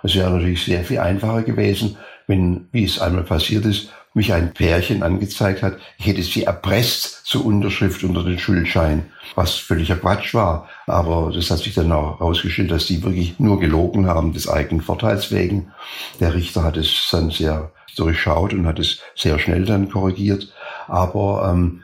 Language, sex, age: German, male, 60-79